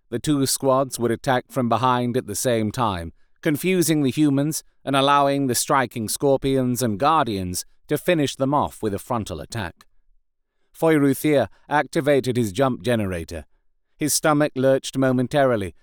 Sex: male